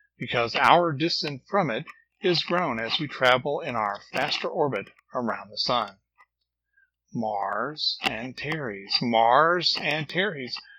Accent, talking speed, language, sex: American, 130 wpm, English, male